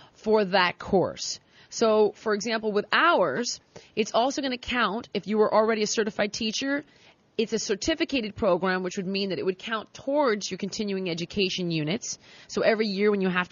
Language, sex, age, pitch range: English, female, 30-49, 190-245 Hz